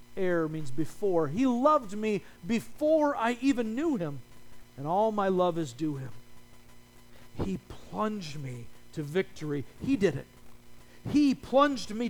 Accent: American